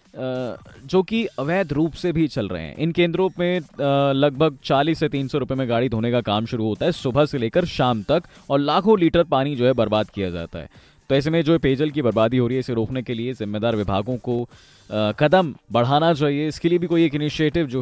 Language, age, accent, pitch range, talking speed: Hindi, 20-39, native, 115-160 Hz, 225 wpm